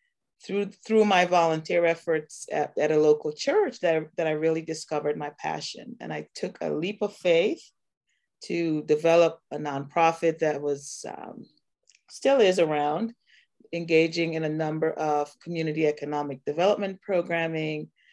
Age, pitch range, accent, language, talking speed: 30-49, 155-205 Hz, American, English, 140 wpm